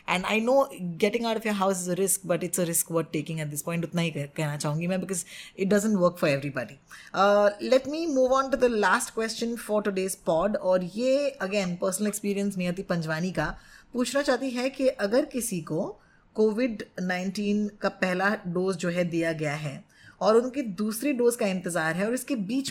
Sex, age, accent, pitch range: female, 20-39, native, 175-225 Hz